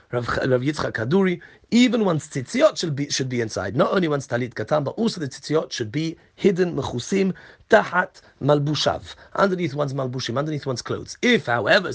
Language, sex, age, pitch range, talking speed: English, male, 40-59, 130-185 Hz, 170 wpm